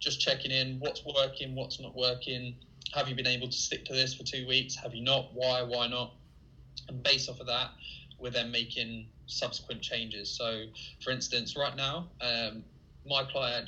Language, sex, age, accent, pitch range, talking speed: English, male, 20-39, British, 120-135 Hz, 190 wpm